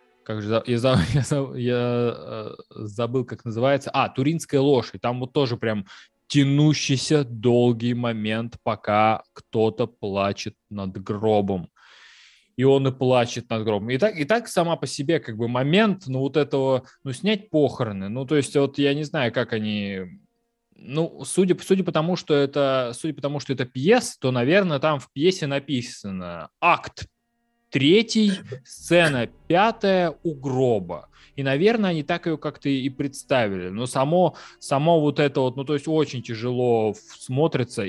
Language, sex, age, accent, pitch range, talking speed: Russian, male, 20-39, native, 120-155 Hz, 155 wpm